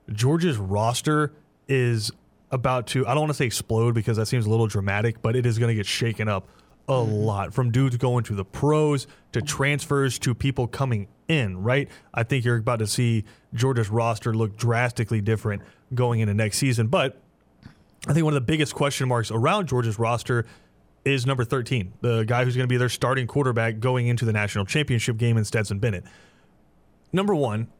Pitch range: 110-135 Hz